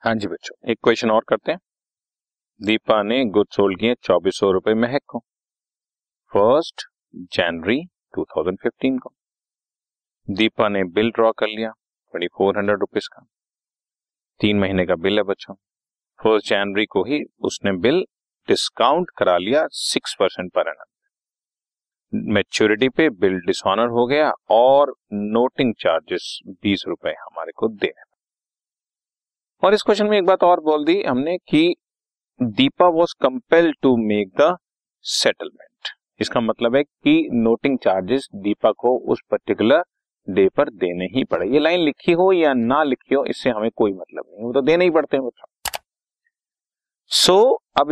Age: 40-59